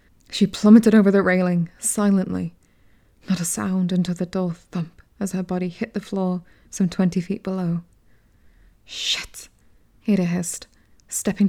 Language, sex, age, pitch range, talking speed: English, female, 20-39, 170-195 Hz, 140 wpm